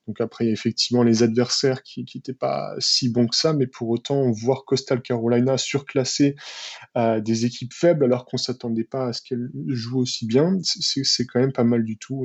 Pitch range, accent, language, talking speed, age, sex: 115-135 Hz, French, French, 205 wpm, 20-39, male